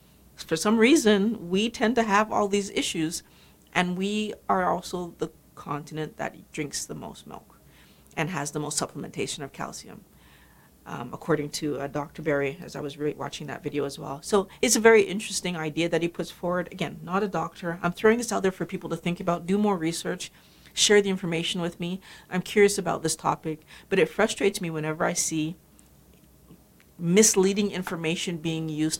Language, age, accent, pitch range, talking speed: English, 40-59, American, 160-200 Hz, 185 wpm